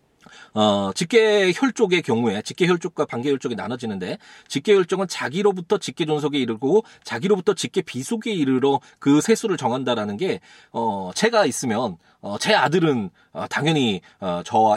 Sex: male